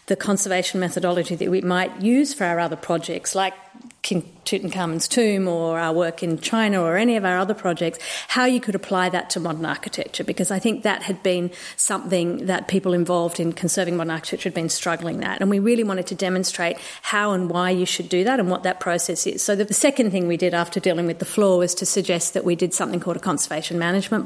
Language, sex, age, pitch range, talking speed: English, female, 40-59, 175-205 Hz, 230 wpm